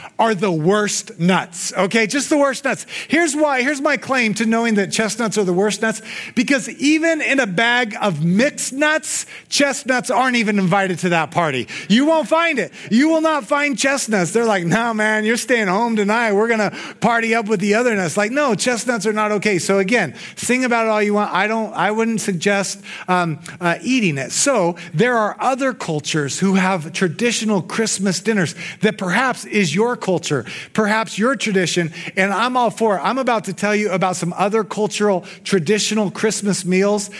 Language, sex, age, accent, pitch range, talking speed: English, male, 30-49, American, 190-235 Hz, 195 wpm